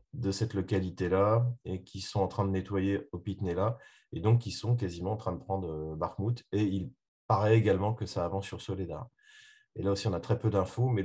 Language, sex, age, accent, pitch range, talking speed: French, male, 30-49, French, 90-115 Hz, 215 wpm